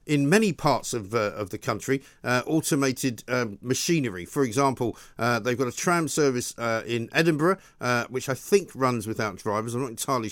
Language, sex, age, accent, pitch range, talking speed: English, male, 50-69, British, 115-145 Hz, 190 wpm